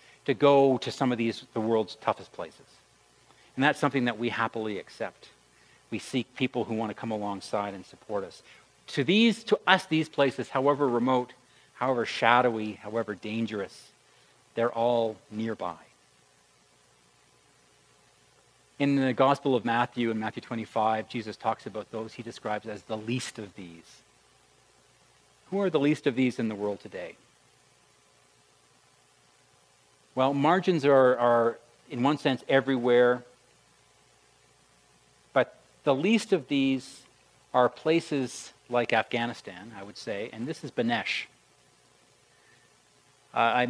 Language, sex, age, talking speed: English, male, 40-59, 135 wpm